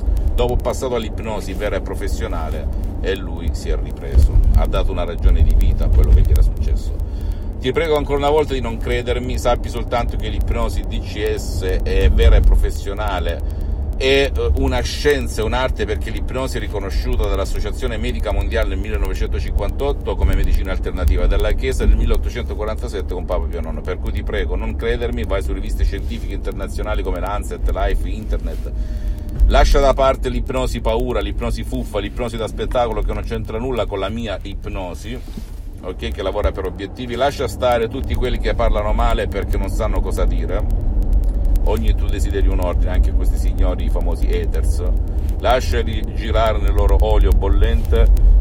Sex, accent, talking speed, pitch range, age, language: male, native, 165 wpm, 75-100 Hz, 50-69, Italian